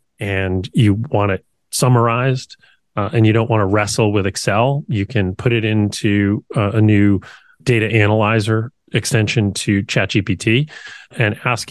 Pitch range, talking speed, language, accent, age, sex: 100-120 Hz, 155 wpm, English, American, 30-49, male